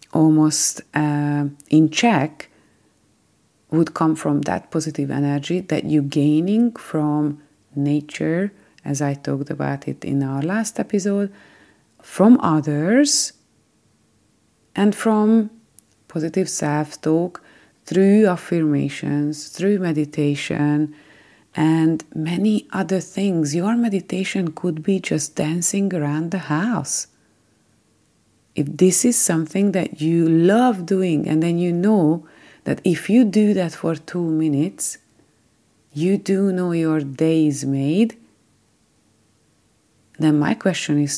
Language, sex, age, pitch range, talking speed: English, female, 30-49, 150-190 Hz, 115 wpm